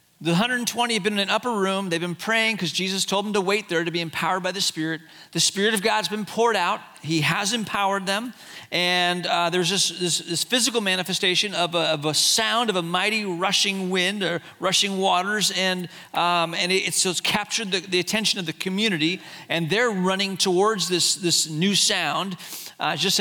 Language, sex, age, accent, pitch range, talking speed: English, male, 40-59, American, 165-215 Hz, 195 wpm